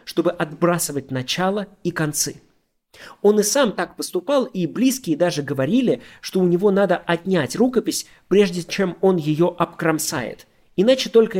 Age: 20-39